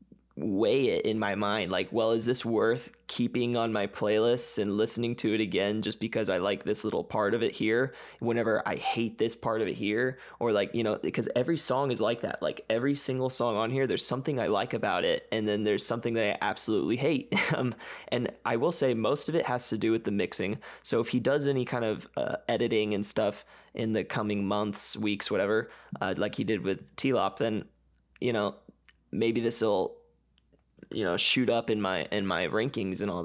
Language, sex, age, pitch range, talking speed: English, male, 20-39, 110-130 Hz, 220 wpm